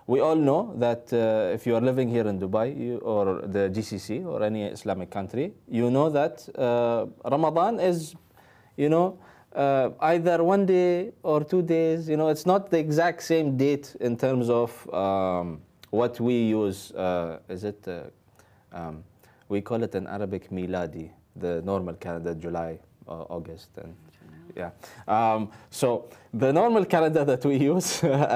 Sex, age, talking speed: male, 20-39, 165 wpm